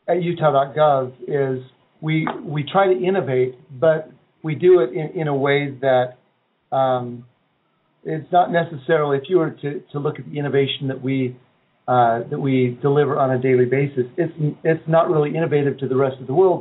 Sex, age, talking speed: male, 40-59, 185 wpm